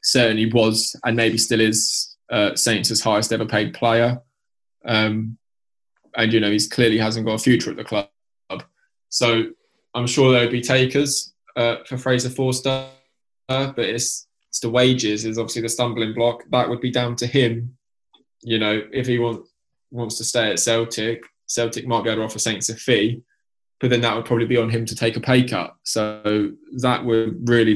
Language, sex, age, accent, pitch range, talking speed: English, male, 10-29, British, 110-120 Hz, 190 wpm